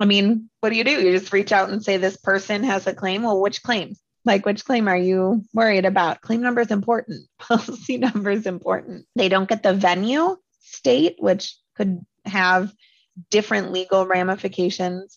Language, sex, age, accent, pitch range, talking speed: English, female, 30-49, American, 180-215 Hz, 185 wpm